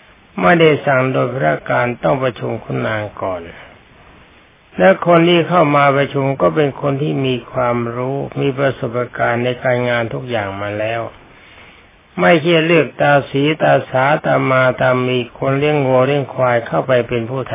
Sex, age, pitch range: male, 60-79, 115-145 Hz